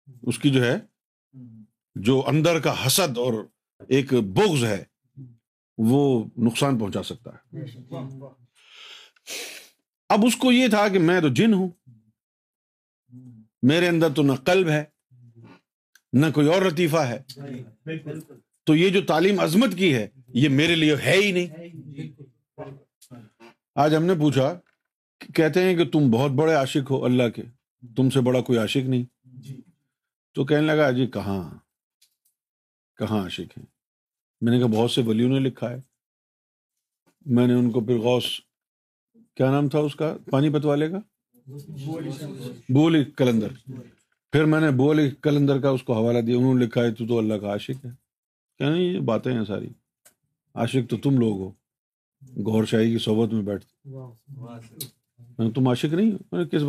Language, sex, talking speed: Urdu, male, 155 wpm